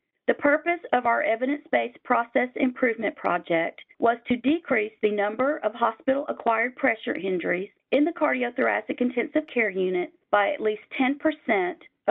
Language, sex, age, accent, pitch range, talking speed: English, female, 40-59, American, 210-280 Hz, 145 wpm